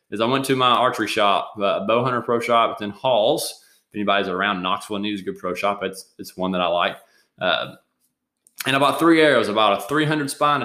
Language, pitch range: English, 100-135 Hz